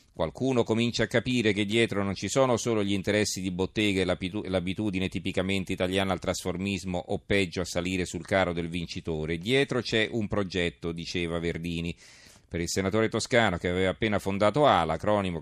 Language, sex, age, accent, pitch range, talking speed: Italian, male, 40-59, native, 90-110 Hz, 170 wpm